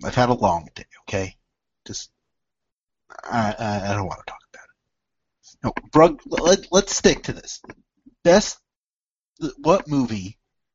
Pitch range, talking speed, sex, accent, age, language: 110-170 Hz, 140 wpm, male, American, 30-49, English